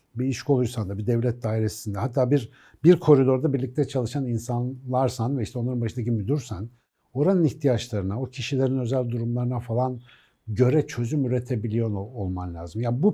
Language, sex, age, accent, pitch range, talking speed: Turkish, male, 60-79, native, 120-150 Hz, 160 wpm